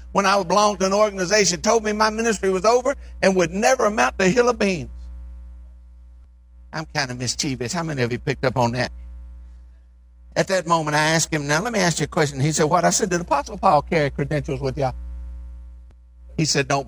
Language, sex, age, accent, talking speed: English, male, 60-79, American, 215 wpm